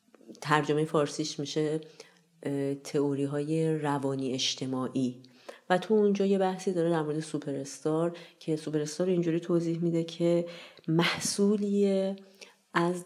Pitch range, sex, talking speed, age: 140-165 Hz, female, 105 wpm, 40-59